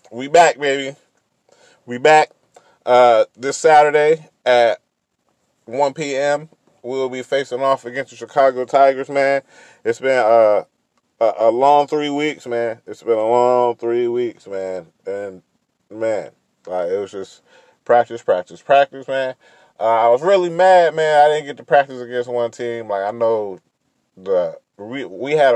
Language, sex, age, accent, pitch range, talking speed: English, male, 30-49, American, 115-150 Hz, 155 wpm